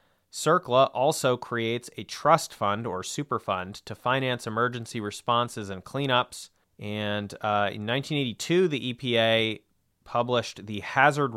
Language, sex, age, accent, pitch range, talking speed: English, male, 30-49, American, 105-125 Hz, 120 wpm